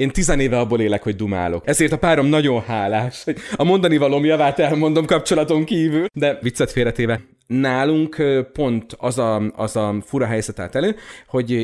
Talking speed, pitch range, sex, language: 170 wpm, 110-150 Hz, male, Hungarian